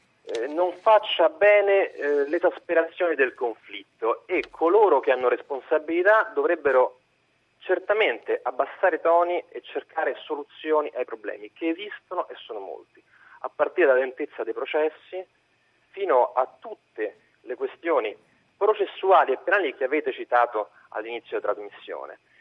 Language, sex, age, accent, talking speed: Italian, male, 40-59, native, 125 wpm